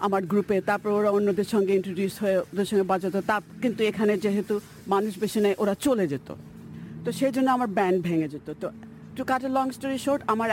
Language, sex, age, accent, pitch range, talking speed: Bengali, female, 50-69, native, 190-235 Hz, 200 wpm